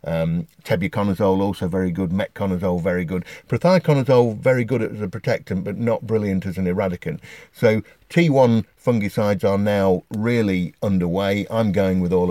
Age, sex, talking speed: 50-69, male, 150 wpm